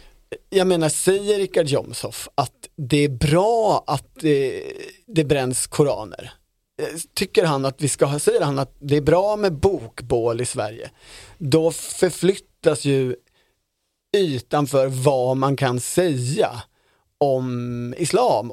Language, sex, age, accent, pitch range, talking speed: Swedish, male, 30-49, native, 135-180 Hz, 135 wpm